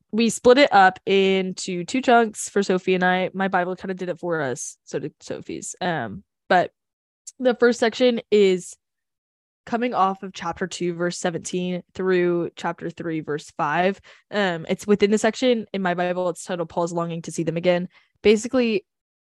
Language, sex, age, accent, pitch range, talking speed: English, female, 10-29, American, 170-205 Hz, 180 wpm